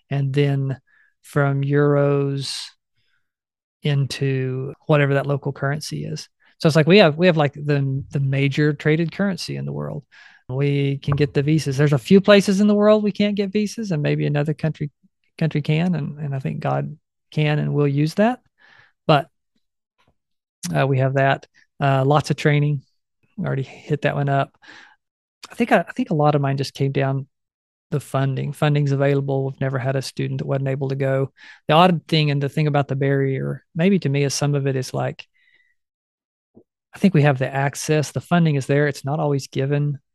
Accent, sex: American, male